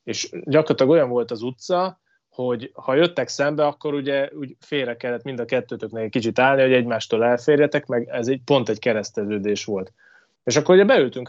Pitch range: 120-160 Hz